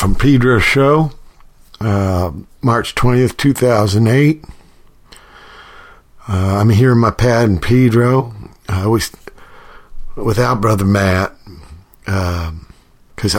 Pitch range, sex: 95-115 Hz, male